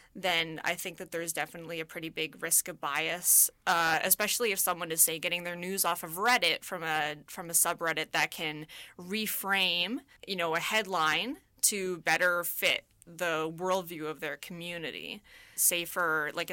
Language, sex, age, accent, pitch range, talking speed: English, female, 20-39, American, 170-215 Hz, 170 wpm